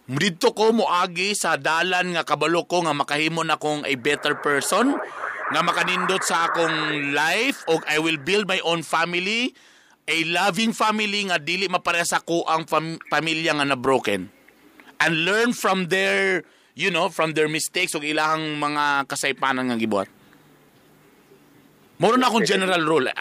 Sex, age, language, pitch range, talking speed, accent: male, 30-49, English, 150-205 Hz, 155 wpm, Filipino